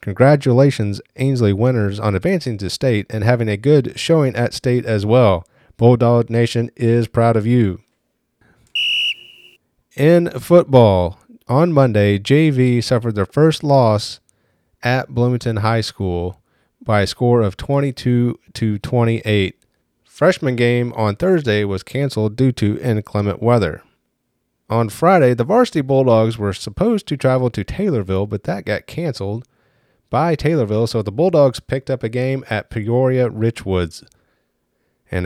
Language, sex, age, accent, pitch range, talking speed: English, male, 40-59, American, 105-135 Hz, 135 wpm